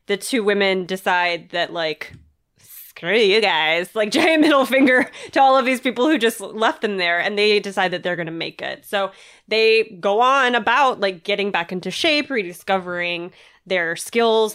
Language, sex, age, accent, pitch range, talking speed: English, female, 20-39, American, 180-230 Hz, 180 wpm